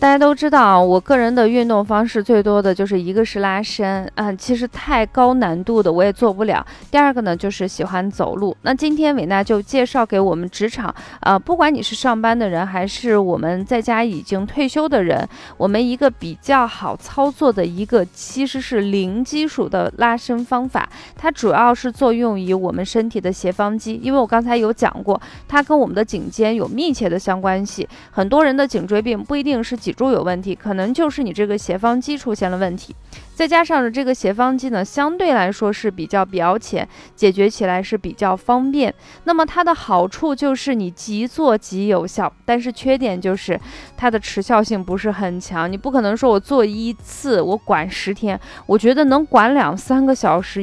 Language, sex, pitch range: Chinese, female, 195-260 Hz